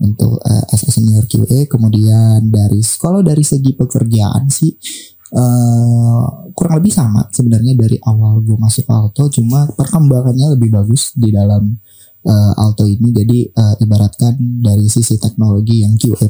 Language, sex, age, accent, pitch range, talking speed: Indonesian, male, 20-39, native, 110-135 Hz, 145 wpm